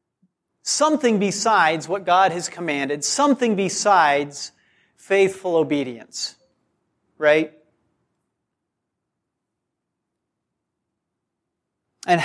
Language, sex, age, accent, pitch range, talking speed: English, male, 40-59, American, 170-220 Hz, 60 wpm